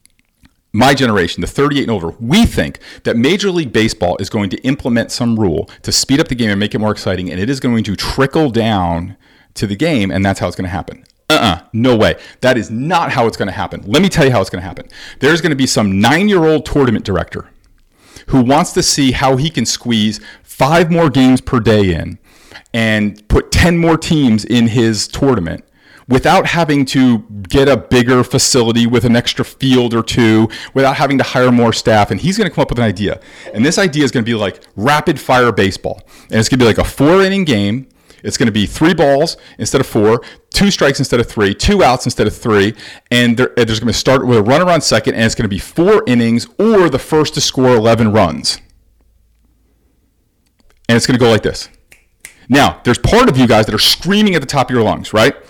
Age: 40-59